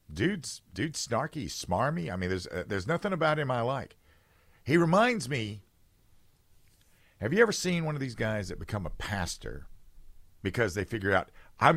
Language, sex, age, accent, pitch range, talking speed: English, male, 50-69, American, 90-120 Hz, 175 wpm